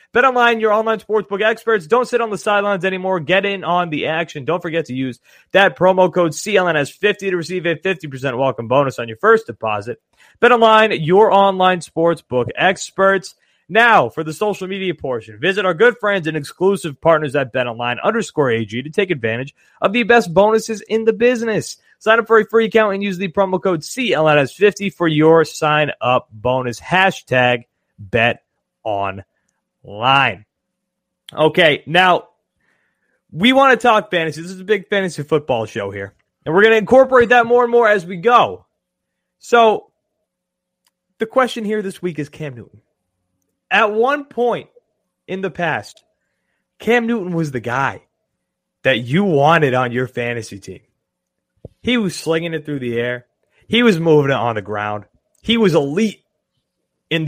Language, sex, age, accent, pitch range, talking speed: English, male, 30-49, American, 135-210 Hz, 165 wpm